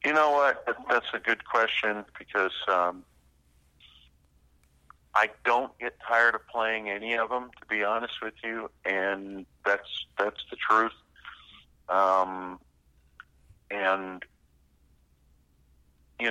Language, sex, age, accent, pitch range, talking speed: English, male, 40-59, American, 70-100 Hz, 115 wpm